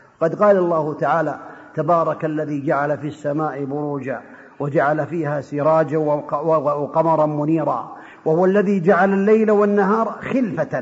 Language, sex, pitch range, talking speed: Arabic, male, 160-215 Hz, 115 wpm